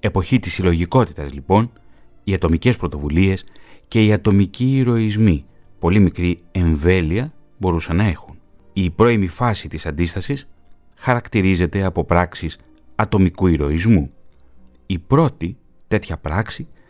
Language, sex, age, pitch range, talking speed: Greek, male, 30-49, 80-110 Hz, 110 wpm